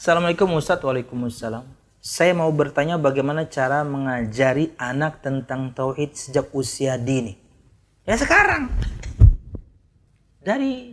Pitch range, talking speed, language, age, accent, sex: 140-225 Hz, 100 wpm, Indonesian, 30-49, native, male